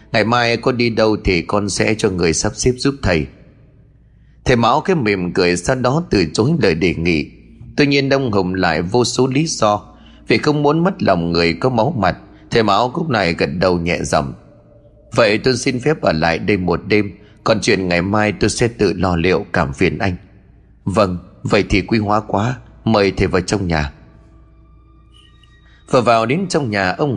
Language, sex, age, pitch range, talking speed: Vietnamese, male, 30-49, 90-130 Hz, 200 wpm